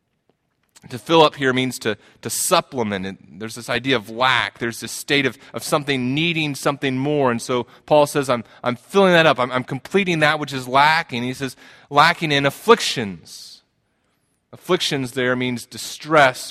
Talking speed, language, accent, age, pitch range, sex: 180 wpm, English, American, 30-49, 125-155 Hz, male